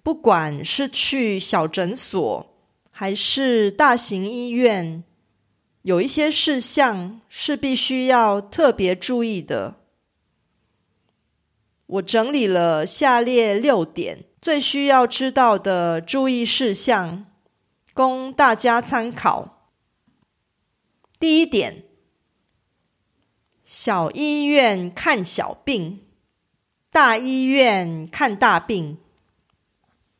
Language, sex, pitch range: Korean, female, 195-270 Hz